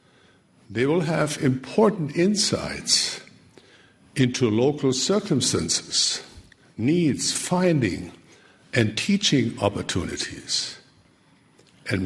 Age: 60-79